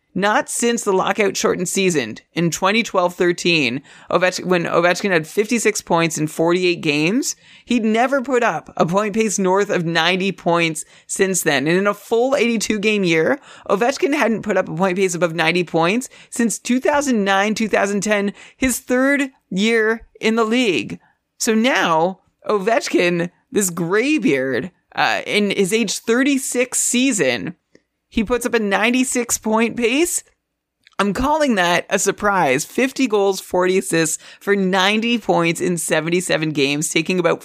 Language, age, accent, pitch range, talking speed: English, 30-49, American, 175-230 Hz, 140 wpm